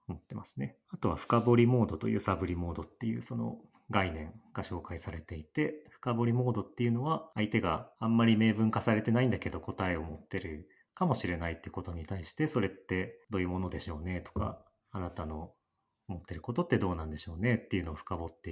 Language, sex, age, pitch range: Japanese, male, 30-49, 85-115 Hz